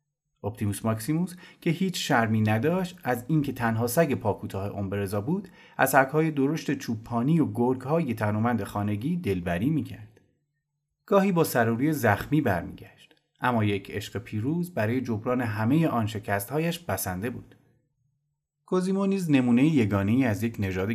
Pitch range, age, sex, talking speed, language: 105-145 Hz, 30-49, male, 130 wpm, Persian